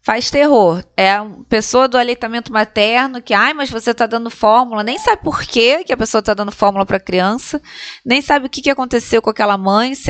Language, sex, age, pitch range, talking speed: Portuguese, female, 20-39, 200-270 Hz, 220 wpm